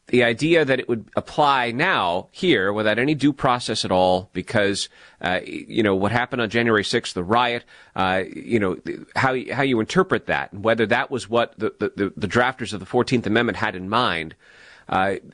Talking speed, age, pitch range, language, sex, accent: 195 wpm, 30-49, 110-135 Hz, English, male, American